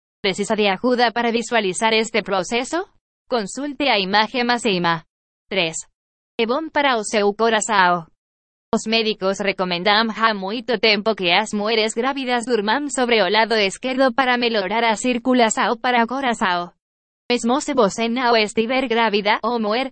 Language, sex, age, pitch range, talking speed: Portuguese, female, 20-39, 205-240 Hz, 140 wpm